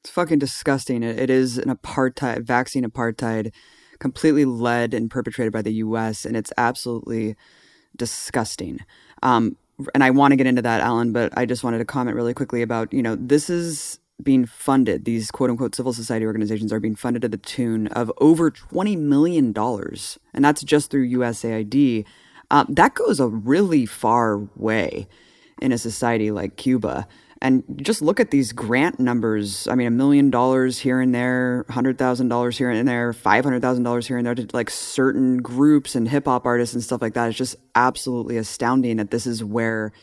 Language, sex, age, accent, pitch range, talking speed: English, female, 20-39, American, 120-145 Hz, 180 wpm